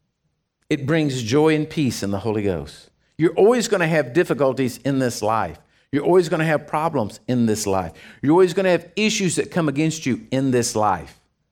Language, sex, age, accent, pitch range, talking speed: English, male, 50-69, American, 120-165 Hz, 210 wpm